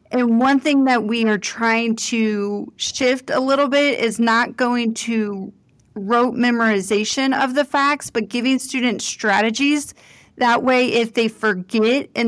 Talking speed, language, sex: 150 wpm, English, female